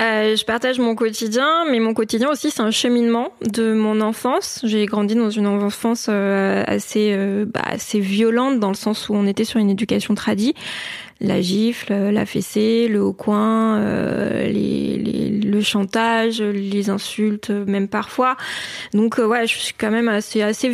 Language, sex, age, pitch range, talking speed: French, female, 20-39, 205-235 Hz, 175 wpm